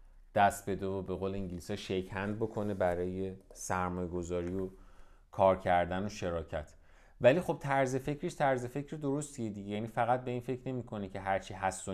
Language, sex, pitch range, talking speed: Persian, male, 95-135 Hz, 165 wpm